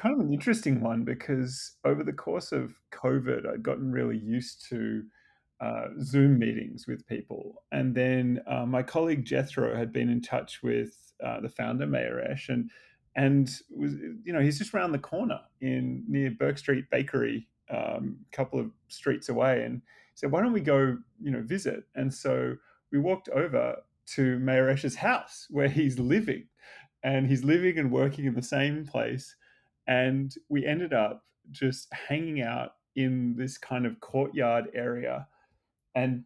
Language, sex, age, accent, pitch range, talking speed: English, male, 30-49, Australian, 120-145 Hz, 165 wpm